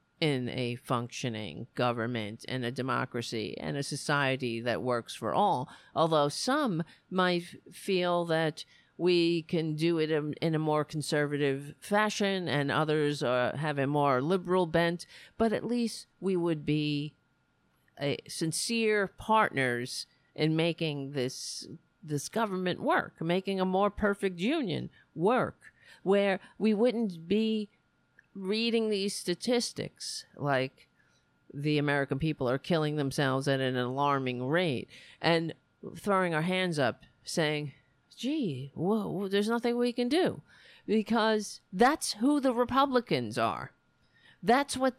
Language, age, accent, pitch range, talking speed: English, 50-69, American, 145-220 Hz, 125 wpm